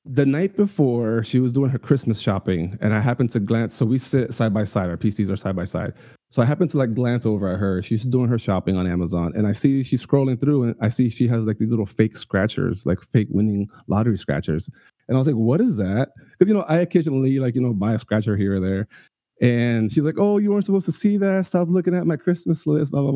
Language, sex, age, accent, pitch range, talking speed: English, male, 30-49, American, 105-135 Hz, 260 wpm